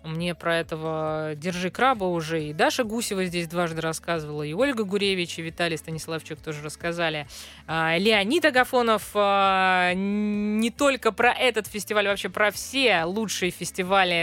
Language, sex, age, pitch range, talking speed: Russian, female, 20-39, 160-215 Hz, 135 wpm